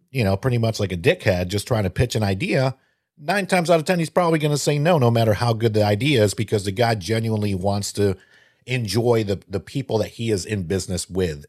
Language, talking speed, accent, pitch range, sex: English, 245 wpm, American, 100-125 Hz, male